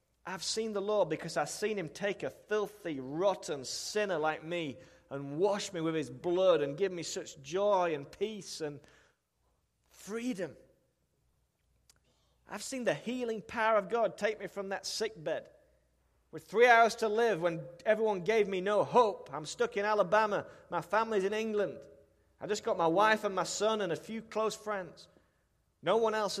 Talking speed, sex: 175 wpm, male